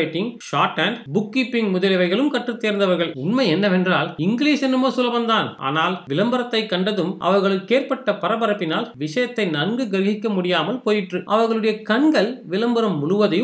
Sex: male